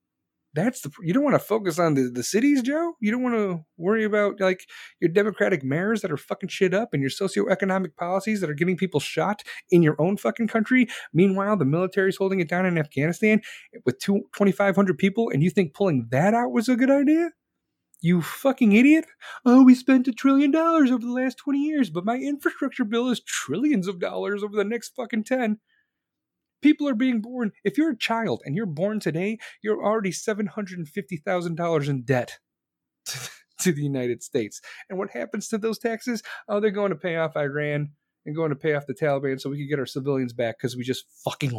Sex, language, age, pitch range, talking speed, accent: male, English, 30-49, 150-230 Hz, 205 wpm, American